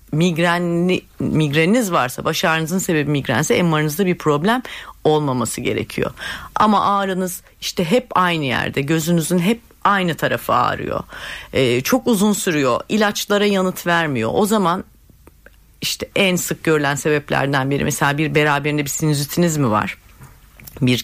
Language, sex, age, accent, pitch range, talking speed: Turkish, female, 40-59, native, 140-195 Hz, 130 wpm